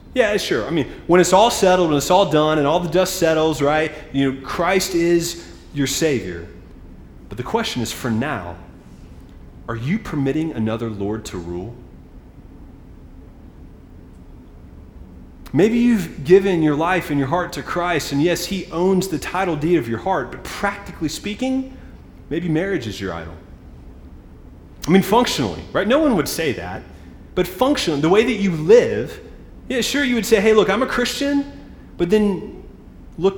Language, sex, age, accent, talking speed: English, male, 30-49, American, 170 wpm